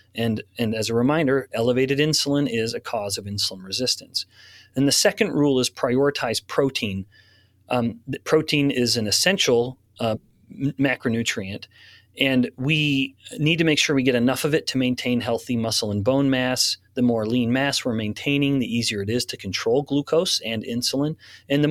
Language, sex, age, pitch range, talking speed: English, male, 30-49, 110-145 Hz, 170 wpm